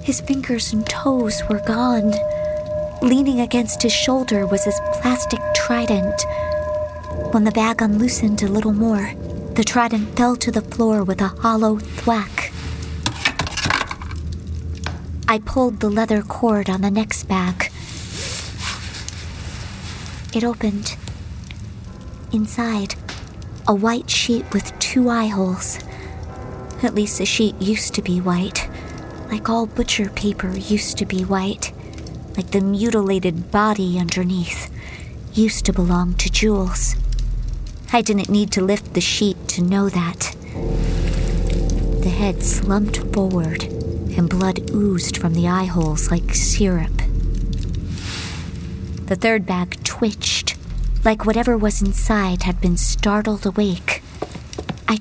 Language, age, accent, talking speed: English, 40-59, American, 120 wpm